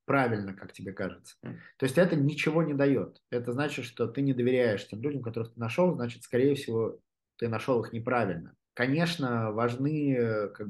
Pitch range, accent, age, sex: 100-130 Hz, native, 20-39, male